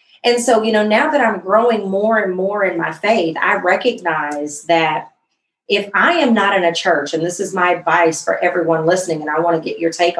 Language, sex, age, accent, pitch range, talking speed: English, female, 40-59, American, 175-235 Hz, 230 wpm